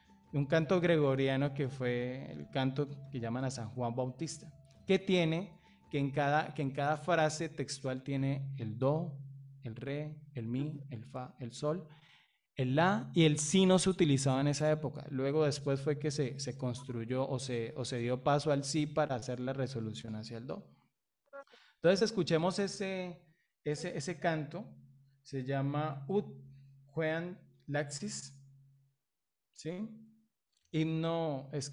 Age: 20-39